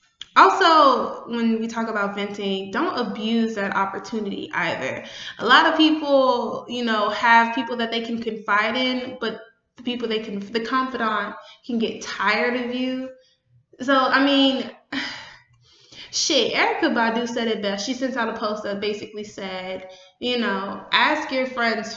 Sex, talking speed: female, 160 wpm